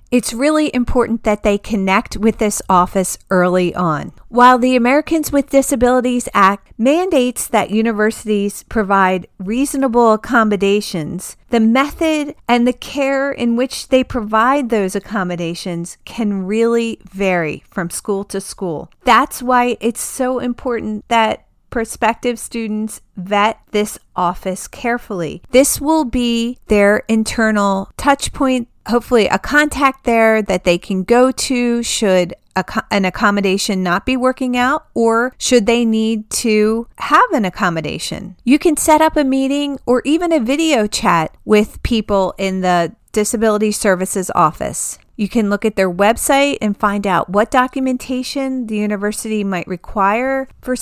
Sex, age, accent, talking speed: female, 40-59, American, 140 wpm